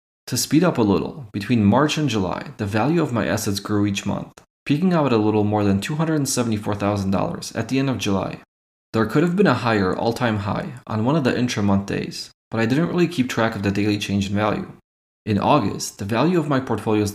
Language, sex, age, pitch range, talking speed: English, male, 20-39, 100-130 Hz, 220 wpm